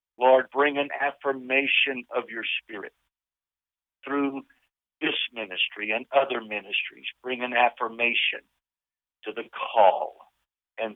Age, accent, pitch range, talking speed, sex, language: 50-69, American, 115-135 Hz, 110 wpm, male, English